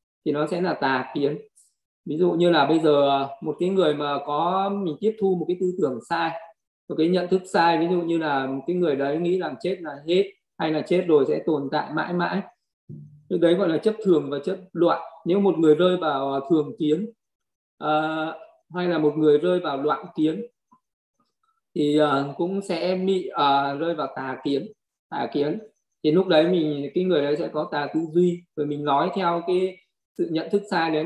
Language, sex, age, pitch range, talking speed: Vietnamese, male, 20-39, 145-175 Hz, 205 wpm